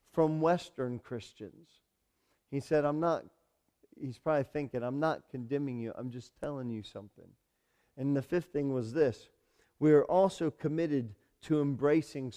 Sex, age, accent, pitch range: male, 40-59, American, 115-150 Hz